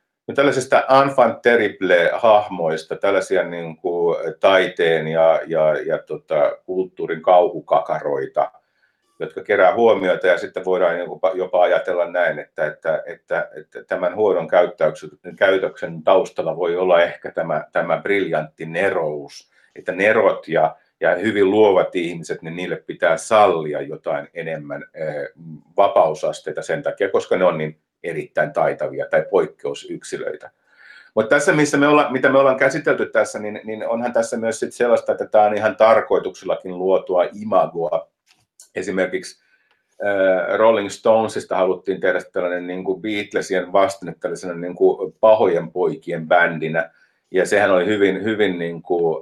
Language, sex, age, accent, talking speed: Finnish, male, 50-69, native, 130 wpm